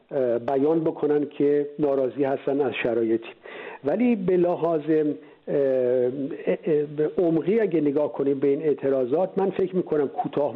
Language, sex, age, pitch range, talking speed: Persian, male, 50-69, 135-165 Hz, 120 wpm